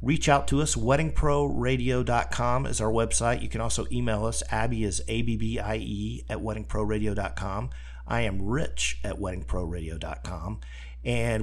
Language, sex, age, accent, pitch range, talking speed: English, male, 50-69, American, 90-130 Hz, 125 wpm